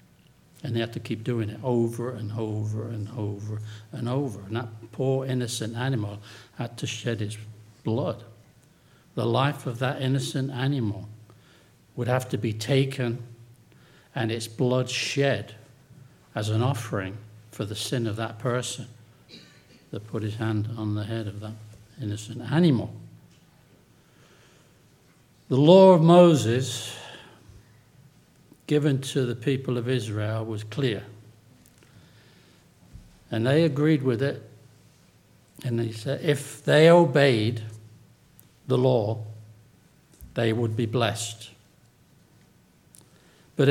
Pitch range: 110-135 Hz